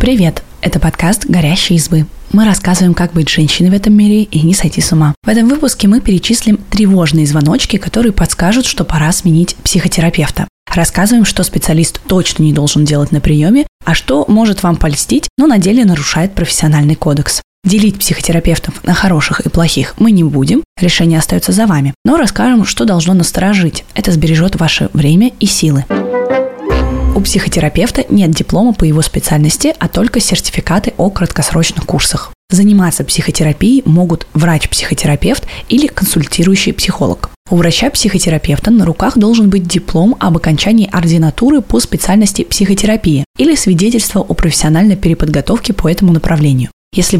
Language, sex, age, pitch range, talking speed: Russian, female, 20-39, 160-210 Hz, 150 wpm